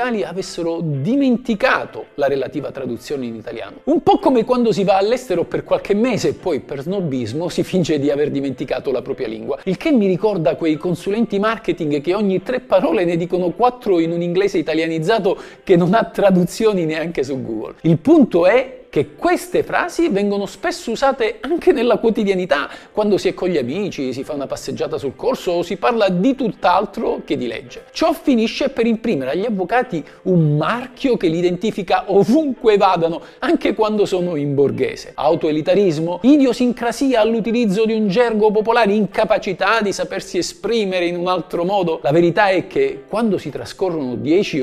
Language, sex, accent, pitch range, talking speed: Italian, male, native, 170-235 Hz, 170 wpm